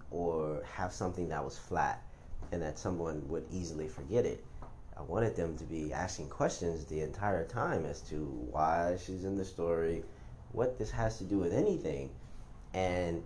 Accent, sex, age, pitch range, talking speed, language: American, male, 30-49, 80-95 Hz, 170 wpm, English